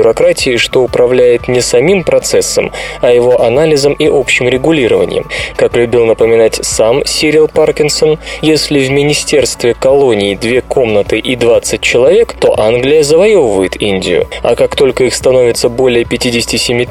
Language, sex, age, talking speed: Russian, male, 20-39, 130 wpm